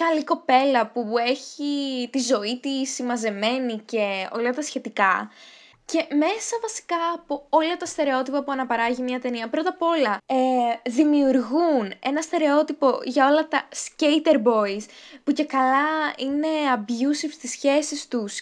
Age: 10-29